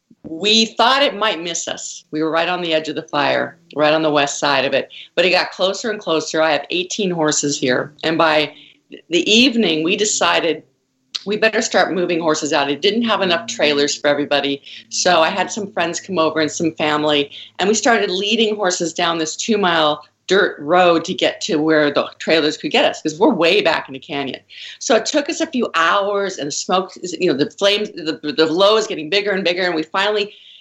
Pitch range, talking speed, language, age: 155-200 Hz, 220 wpm, English, 50-69